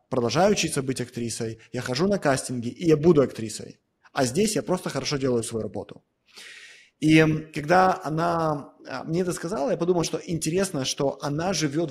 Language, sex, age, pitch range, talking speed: Russian, male, 20-39, 125-160 Hz, 165 wpm